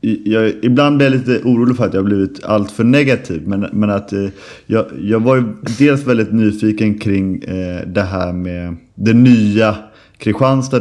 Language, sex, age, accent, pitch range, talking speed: English, male, 30-49, Swedish, 95-115 Hz, 190 wpm